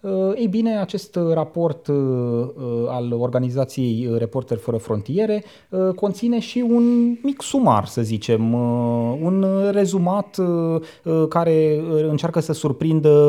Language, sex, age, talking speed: Romanian, male, 30-49, 100 wpm